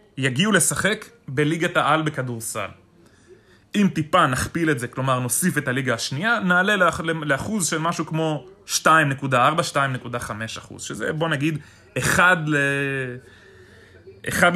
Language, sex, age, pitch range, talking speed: English, male, 20-39, 120-155 Hz, 120 wpm